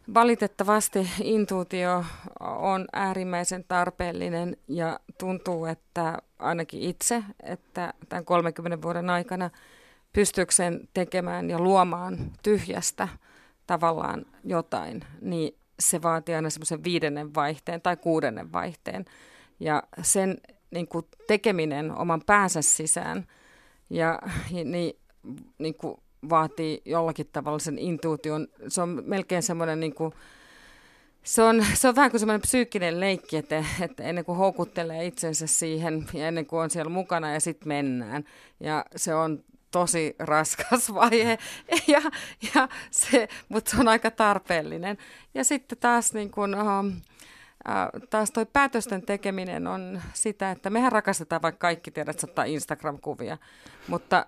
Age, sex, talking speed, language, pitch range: 30-49, female, 125 wpm, Finnish, 165-215 Hz